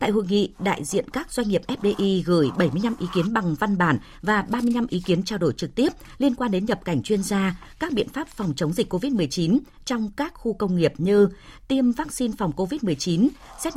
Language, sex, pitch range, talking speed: Vietnamese, female, 170-235 Hz, 215 wpm